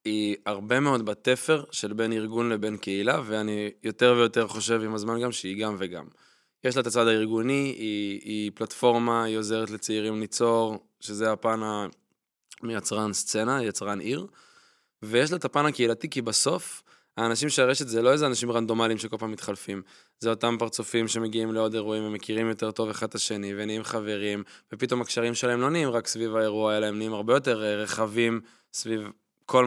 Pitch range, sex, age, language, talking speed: 110-125 Hz, male, 20-39, Hebrew, 170 wpm